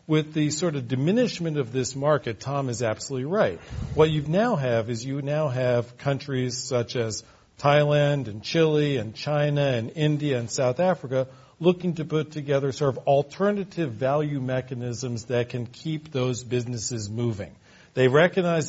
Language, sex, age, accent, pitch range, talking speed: English, male, 50-69, American, 120-150 Hz, 160 wpm